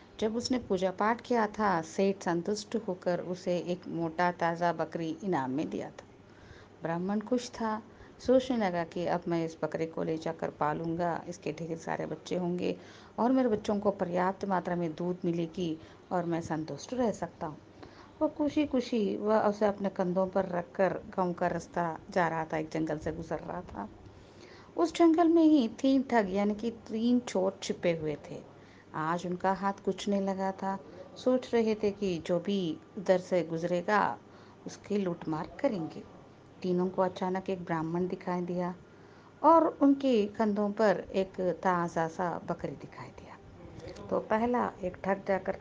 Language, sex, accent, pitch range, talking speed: Telugu, female, native, 170-215 Hz, 170 wpm